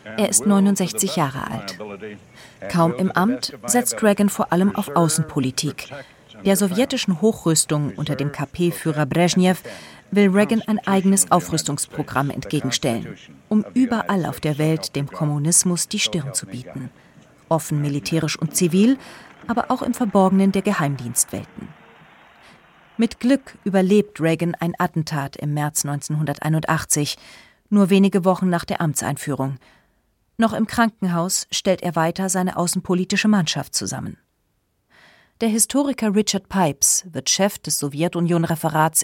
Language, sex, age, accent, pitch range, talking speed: German, female, 40-59, German, 150-200 Hz, 125 wpm